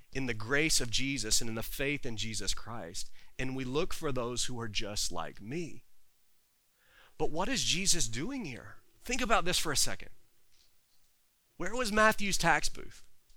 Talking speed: 175 wpm